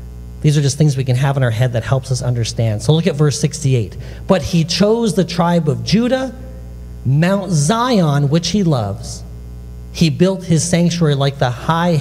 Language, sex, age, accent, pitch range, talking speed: English, male, 40-59, American, 110-165 Hz, 190 wpm